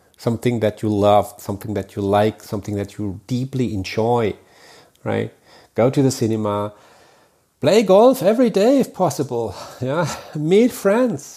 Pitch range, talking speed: 130-195 Hz, 140 wpm